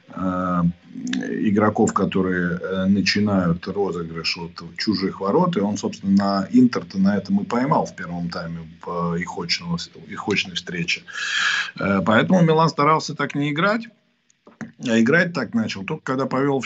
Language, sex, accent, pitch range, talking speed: Russian, male, native, 95-130 Hz, 135 wpm